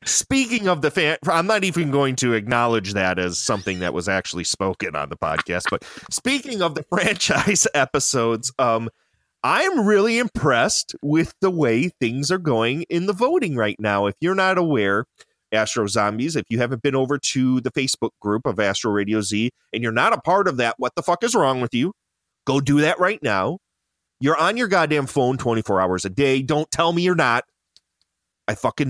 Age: 30-49